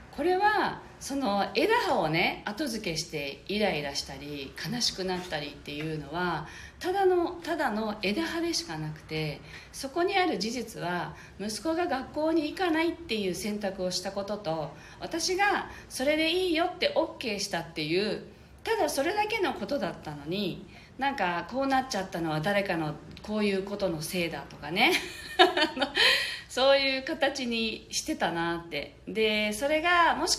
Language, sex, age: Japanese, female, 40-59